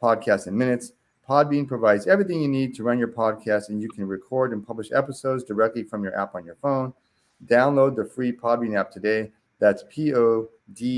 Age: 30-49